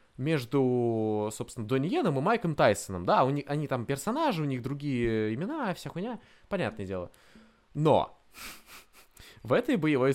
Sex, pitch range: male, 110-165 Hz